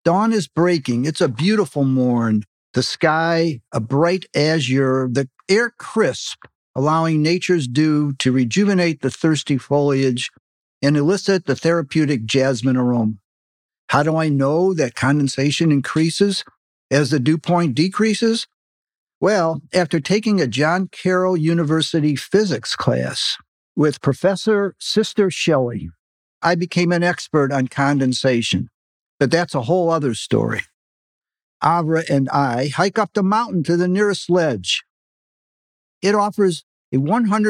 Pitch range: 135-180 Hz